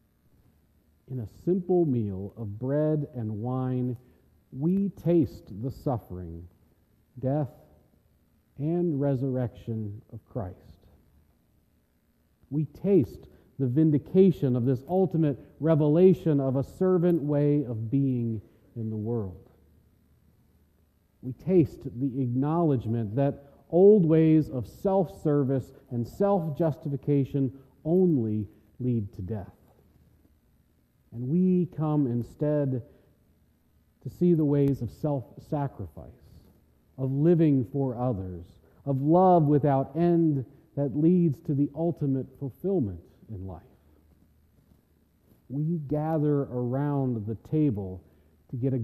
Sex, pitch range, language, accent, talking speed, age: male, 105-150 Hz, English, American, 100 wpm, 40-59